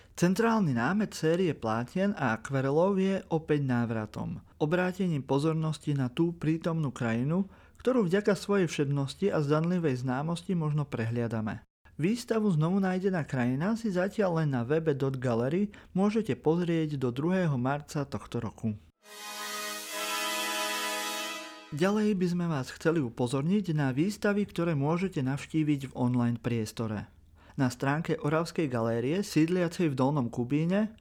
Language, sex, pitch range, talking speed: Slovak, male, 130-175 Hz, 120 wpm